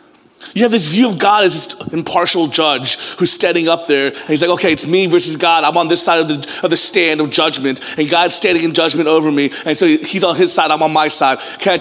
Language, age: English, 30-49